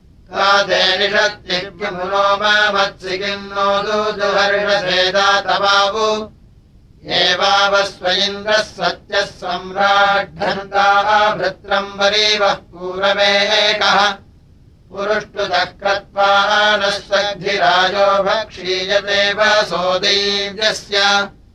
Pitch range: 190-200 Hz